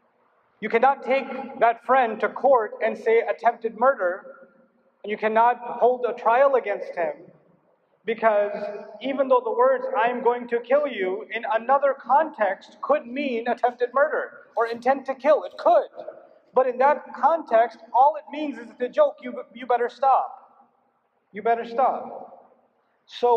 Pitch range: 225-280 Hz